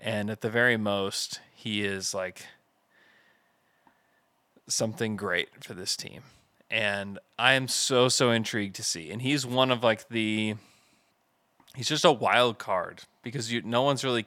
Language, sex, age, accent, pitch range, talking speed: English, male, 20-39, American, 105-125 Hz, 160 wpm